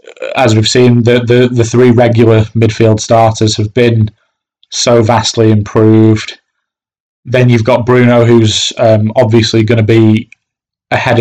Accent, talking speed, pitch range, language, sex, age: British, 140 wpm, 110-130 Hz, English, male, 20-39